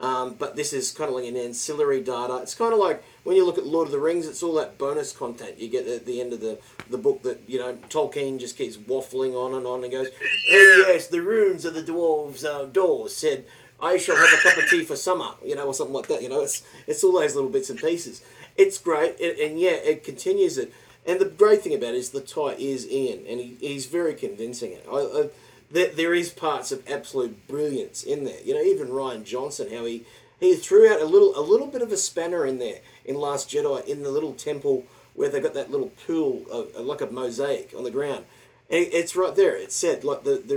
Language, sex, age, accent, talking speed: English, male, 30-49, Australian, 245 wpm